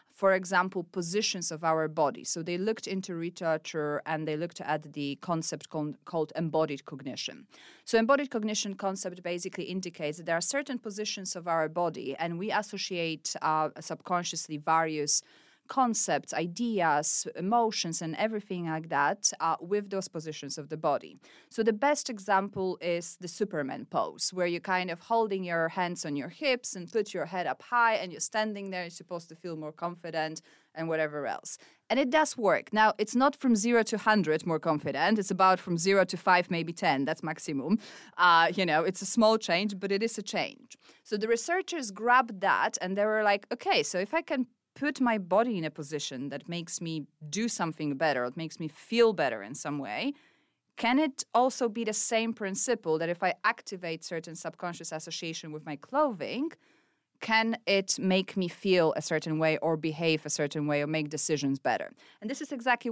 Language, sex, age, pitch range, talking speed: English, female, 30-49, 160-220 Hz, 190 wpm